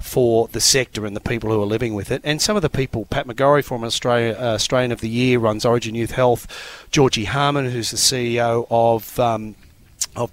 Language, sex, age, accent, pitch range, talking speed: English, male, 30-49, Australian, 115-140 Hz, 200 wpm